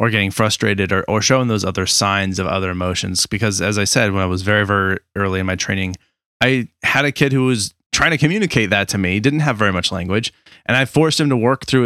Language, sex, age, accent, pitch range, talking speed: English, male, 20-39, American, 100-120 Hz, 250 wpm